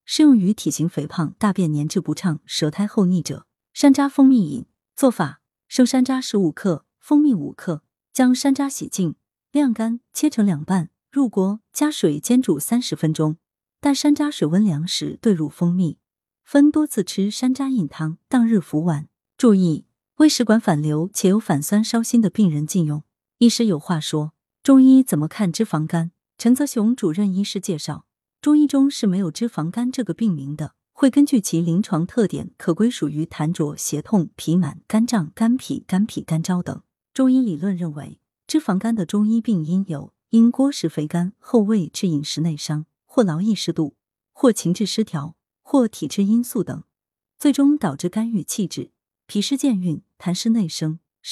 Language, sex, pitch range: Chinese, female, 160-245 Hz